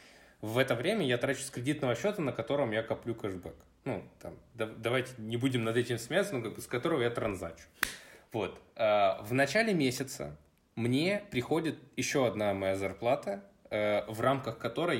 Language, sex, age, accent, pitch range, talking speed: Russian, male, 20-39, native, 115-135 Hz, 165 wpm